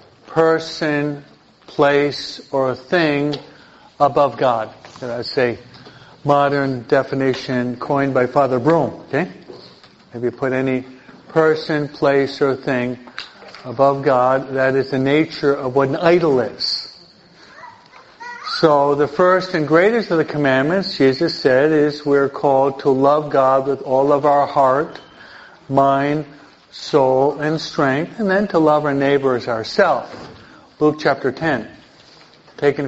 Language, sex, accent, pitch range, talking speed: English, male, American, 130-150 Hz, 130 wpm